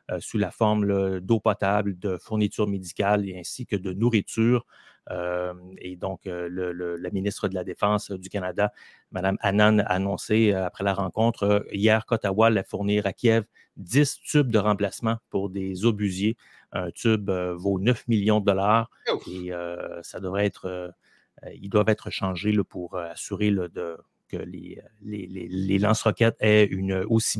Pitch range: 95-110 Hz